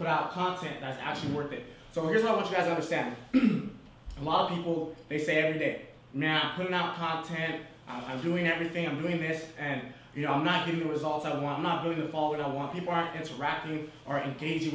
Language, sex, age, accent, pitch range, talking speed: English, male, 20-39, American, 145-175 Hz, 230 wpm